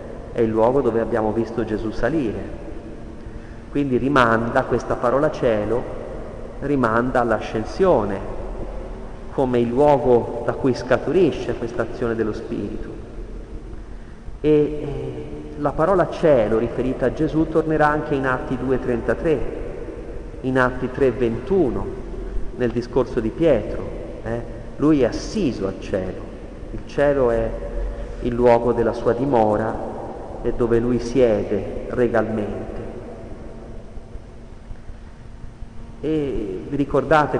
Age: 40-59